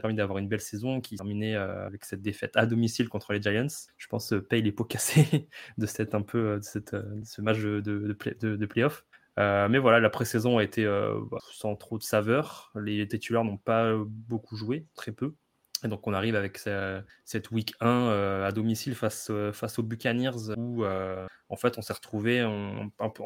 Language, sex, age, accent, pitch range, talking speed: French, male, 20-39, French, 105-115 Hz, 200 wpm